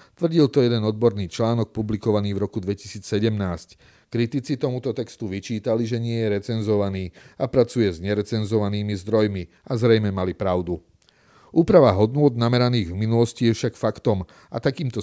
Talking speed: 145 wpm